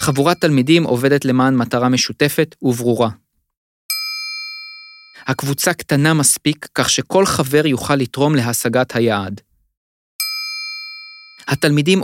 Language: Hebrew